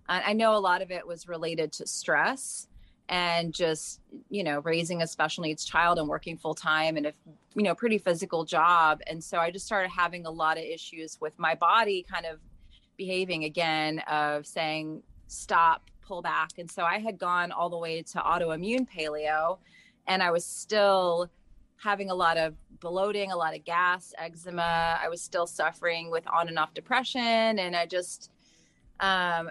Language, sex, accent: English, female, American